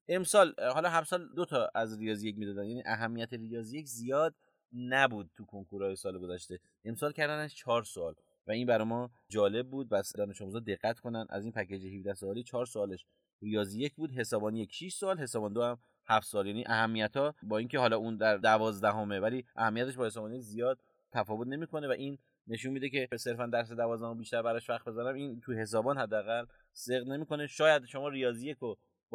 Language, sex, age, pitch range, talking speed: Persian, male, 30-49, 110-145 Hz, 165 wpm